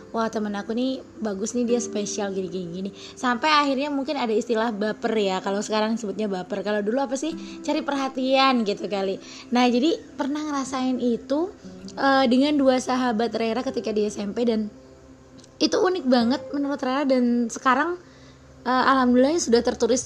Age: 20-39